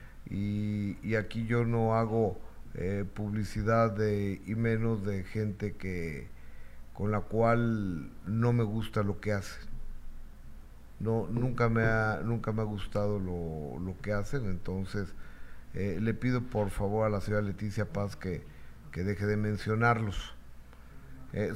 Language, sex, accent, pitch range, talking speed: Spanish, male, Mexican, 105-135 Hz, 145 wpm